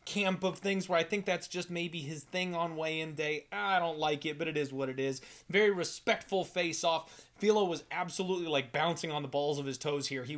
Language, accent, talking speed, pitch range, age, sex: English, American, 235 wpm, 150-185 Hz, 30-49, male